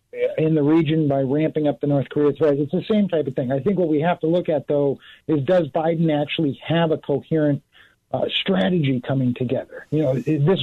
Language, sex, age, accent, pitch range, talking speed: English, male, 50-69, American, 140-170 Hz, 220 wpm